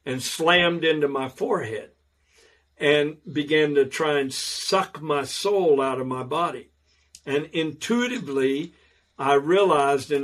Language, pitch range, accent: English, 130-155 Hz, American